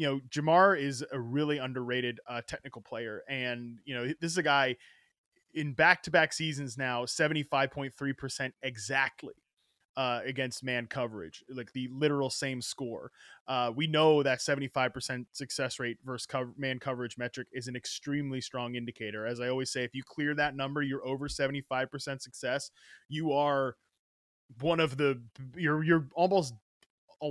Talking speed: 155 wpm